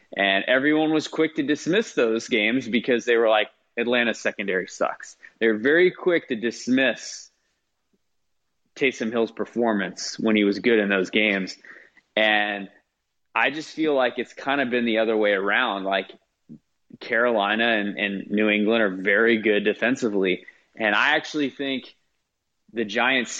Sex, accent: male, American